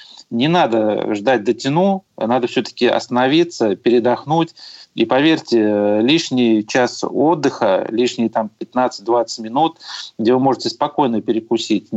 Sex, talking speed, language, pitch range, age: male, 110 wpm, Russian, 115-130 Hz, 30-49